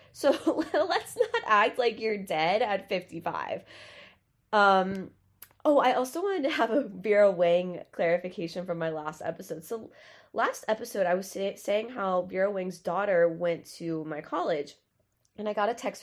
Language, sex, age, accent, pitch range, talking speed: English, female, 20-39, American, 180-255 Hz, 160 wpm